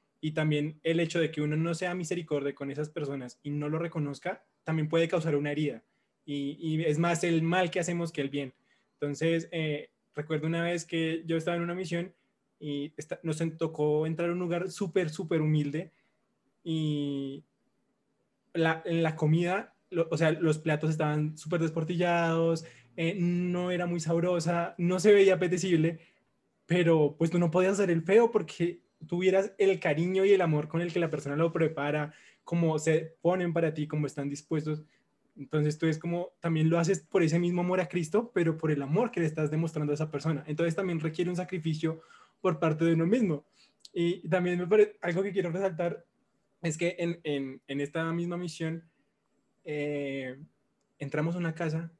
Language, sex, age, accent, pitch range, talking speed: Spanish, male, 20-39, Colombian, 150-175 Hz, 185 wpm